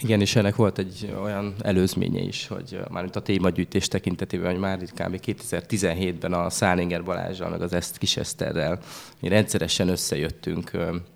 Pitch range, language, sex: 90-100 Hz, Hungarian, male